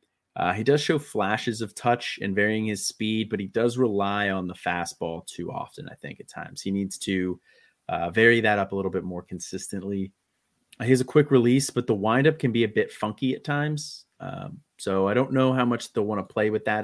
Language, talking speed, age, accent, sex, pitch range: English, 230 wpm, 30-49, American, male, 90-110 Hz